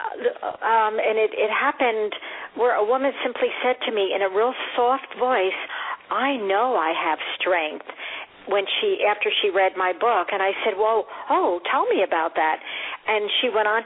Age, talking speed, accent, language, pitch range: 50-69, 180 wpm, American, English, 185-230 Hz